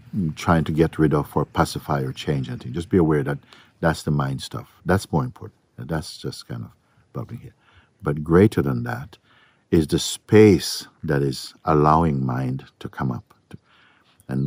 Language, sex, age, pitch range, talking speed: English, male, 60-79, 65-90 Hz, 185 wpm